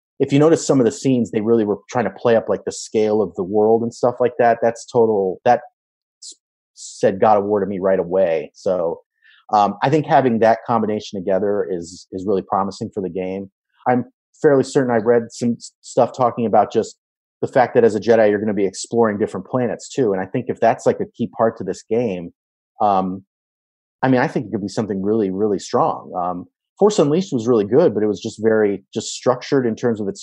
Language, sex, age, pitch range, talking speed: English, male, 30-49, 100-130 Hz, 230 wpm